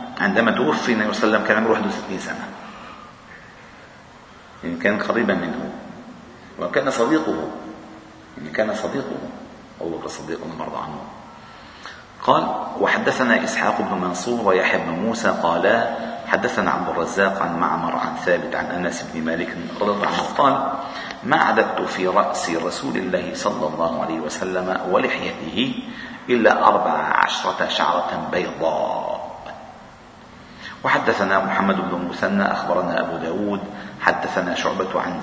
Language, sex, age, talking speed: Arabic, male, 50-69, 125 wpm